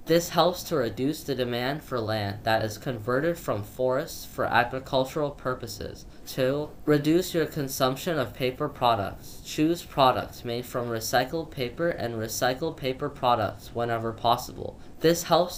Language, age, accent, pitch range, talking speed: English, 10-29, American, 115-145 Hz, 145 wpm